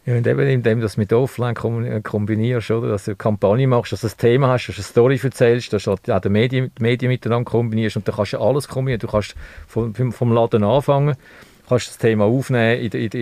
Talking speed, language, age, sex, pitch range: 255 wpm, German, 50-69, male, 110-130 Hz